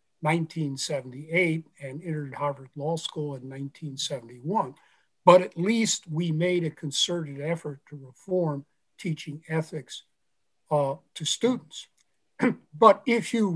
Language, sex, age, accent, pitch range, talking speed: English, male, 50-69, American, 155-210 Hz, 115 wpm